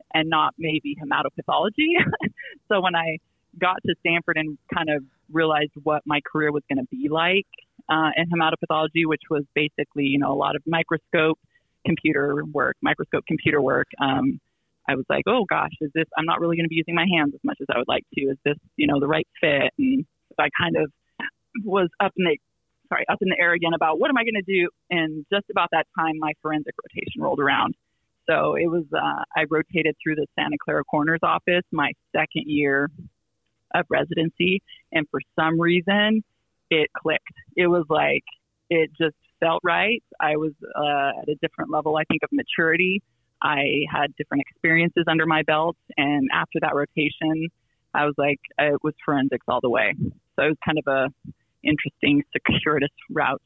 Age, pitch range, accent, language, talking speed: 30-49, 150-170 Hz, American, English, 190 wpm